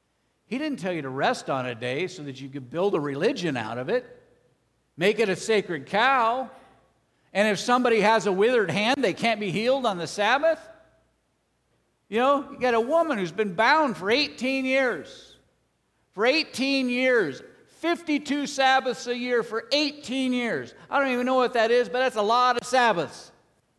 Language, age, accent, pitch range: English, 50-69, American, 195-260 Hz